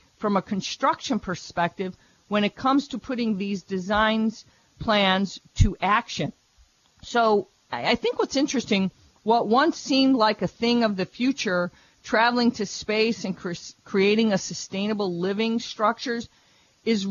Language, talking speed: English, 135 wpm